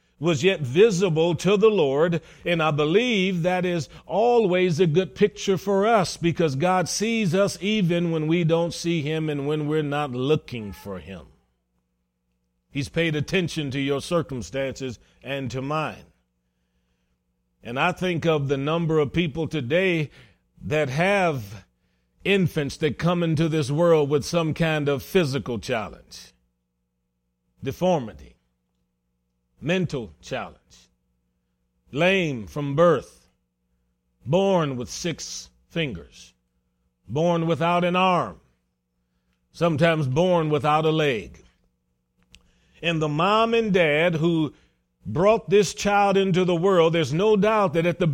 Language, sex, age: English, male, 40-59